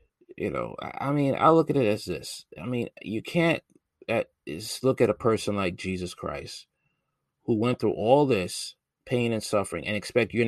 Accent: American